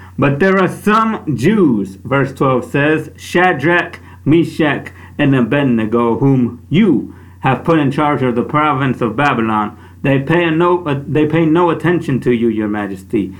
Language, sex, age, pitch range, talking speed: English, male, 50-69, 130-180 Hz, 145 wpm